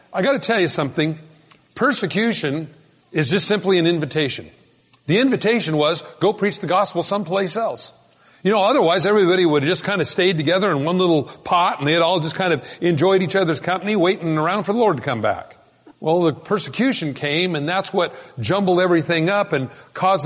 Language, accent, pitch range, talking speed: English, American, 155-210 Hz, 195 wpm